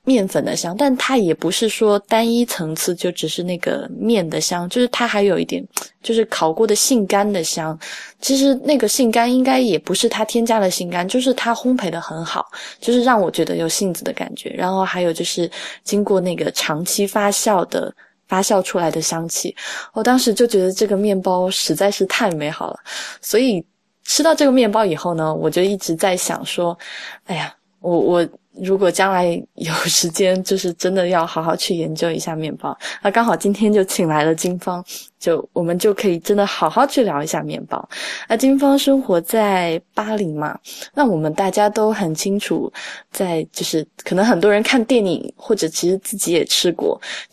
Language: Chinese